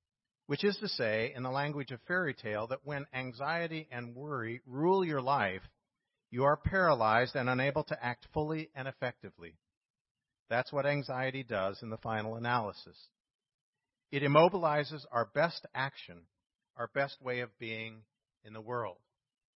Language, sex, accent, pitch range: English, male, American, 115-150 Hz